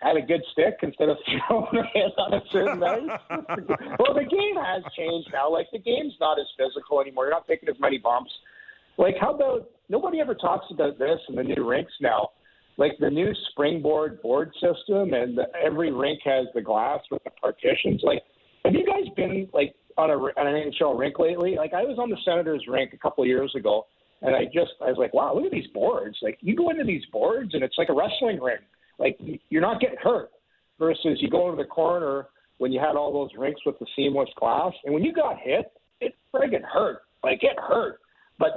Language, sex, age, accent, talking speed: English, male, 50-69, American, 220 wpm